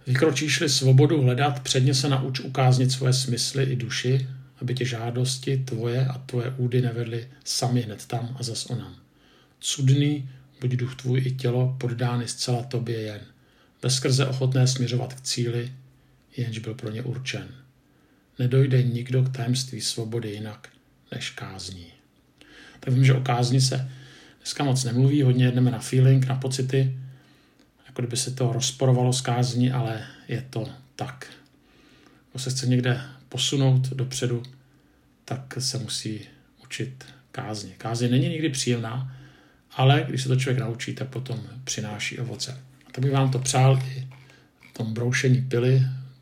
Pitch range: 120-130 Hz